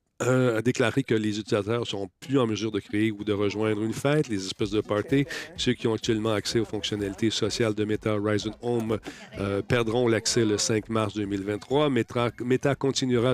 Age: 40-59